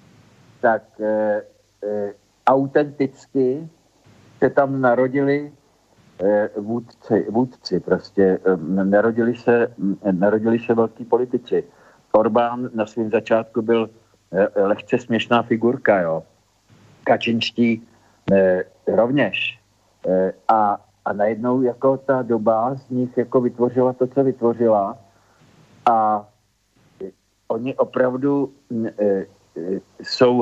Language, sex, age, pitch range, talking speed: Czech, male, 50-69, 105-125 Hz, 105 wpm